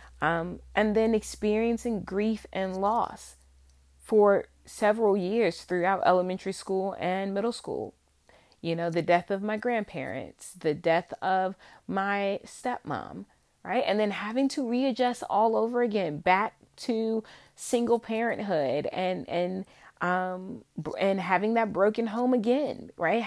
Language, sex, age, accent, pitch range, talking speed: English, female, 30-49, American, 175-215 Hz, 130 wpm